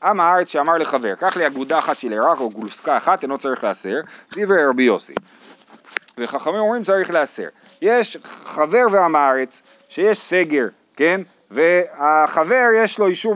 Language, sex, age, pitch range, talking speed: Hebrew, male, 30-49, 165-245 Hz, 155 wpm